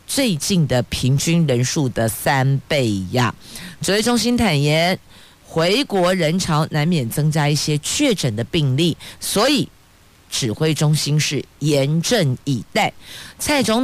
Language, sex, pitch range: Chinese, female, 140-190 Hz